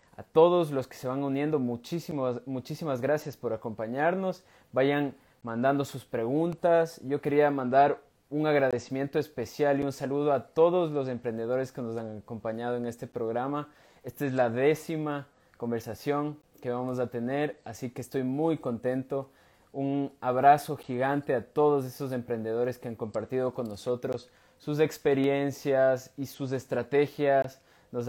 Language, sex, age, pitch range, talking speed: Spanish, male, 20-39, 120-145 Hz, 145 wpm